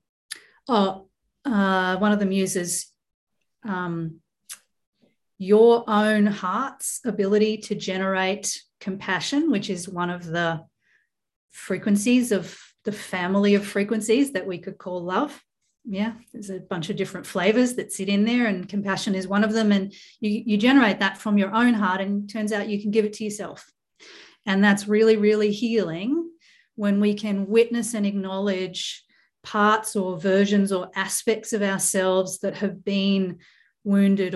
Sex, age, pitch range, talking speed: female, 40-59, 185-215 Hz, 155 wpm